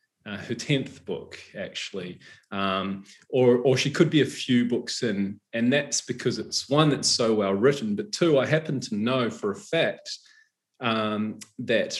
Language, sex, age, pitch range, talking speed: English, male, 20-39, 110-150 Hz, 175 wpm